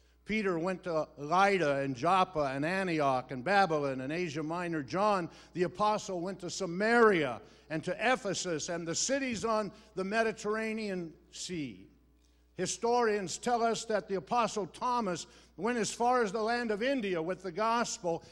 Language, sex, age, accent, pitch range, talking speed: English, male, 60-79, American, 145-195 Hz, 155 wpm